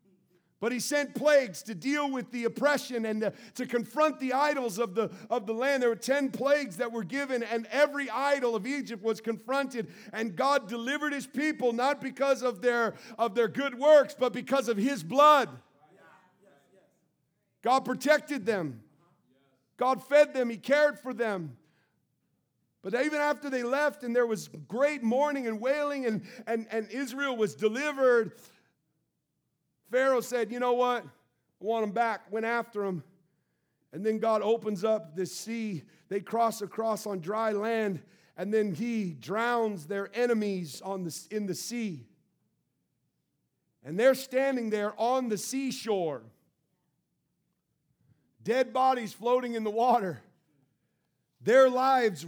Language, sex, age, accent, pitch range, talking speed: English, male, 50-69, American, 205-260 Hz, 150 wpm